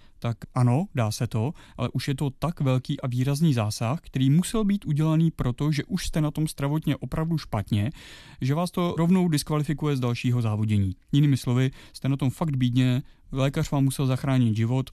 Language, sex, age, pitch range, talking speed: Czech, male, 30-49, 125-140 Hz, 190 wpm